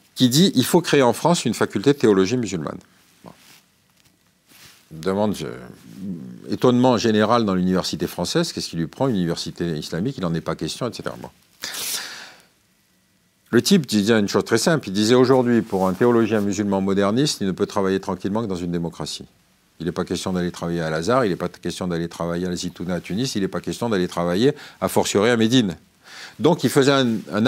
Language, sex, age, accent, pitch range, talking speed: French, male, 50-69, French, 95-150 Hz, 195 wpm